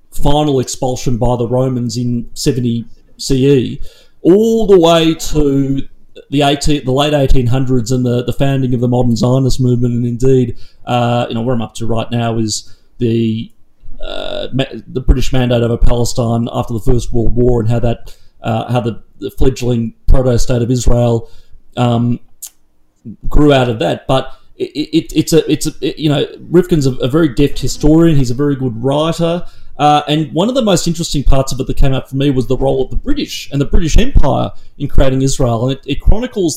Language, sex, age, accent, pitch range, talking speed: English, male, 30-49, Australian, 120-145 Hz, 200 wpm